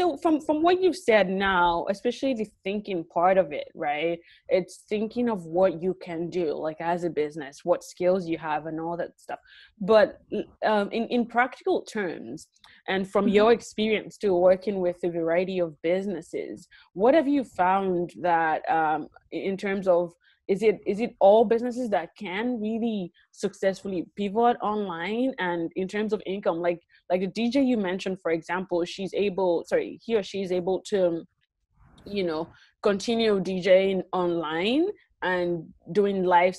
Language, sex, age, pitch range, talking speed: English, female, 20-39, 175-220 Hz, 165 wpm